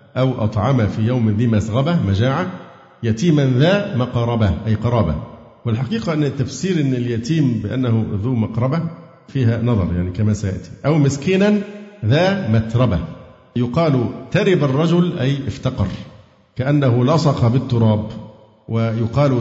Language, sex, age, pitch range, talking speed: Arabic, male, 50-69, 115-150 Hz, 120 wpm